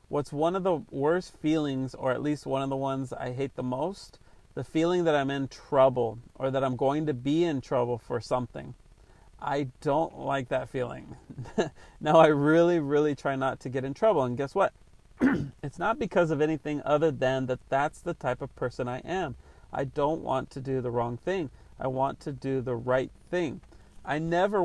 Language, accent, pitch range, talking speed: English, American, 135-165 Hz, 200 wpm